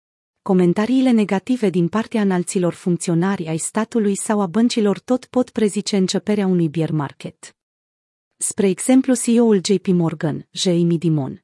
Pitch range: 175-225 Hz